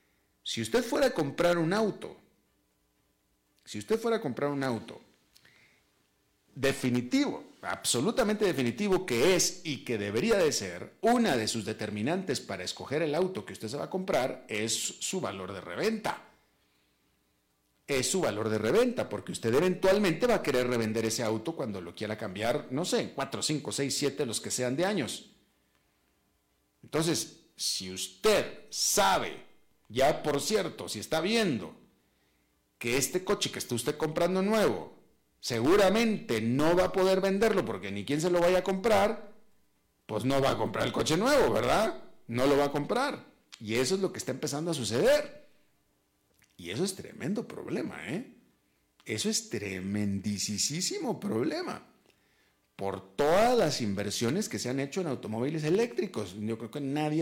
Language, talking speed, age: Spanish, 160 wpm, 50-69